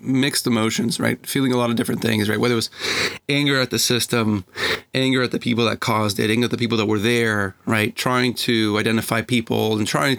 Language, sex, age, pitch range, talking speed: English, male, 30-49, 110-125 Hz, 225 wpm